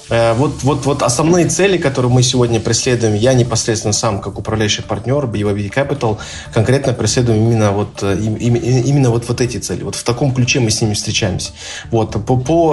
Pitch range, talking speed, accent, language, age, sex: 105-130 Hz, 155 wpm, native, Russian, 20-39, male